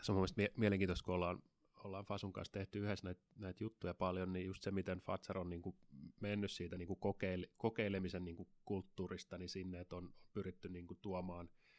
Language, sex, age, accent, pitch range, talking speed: Finnish, male, 30-49, native, 90-95 Hz, 160 wpm